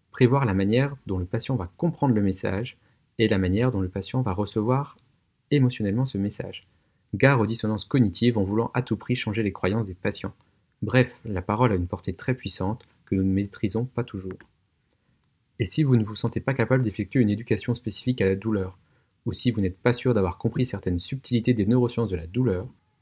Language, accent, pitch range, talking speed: French, French, 95-120 Hz, 205 wpm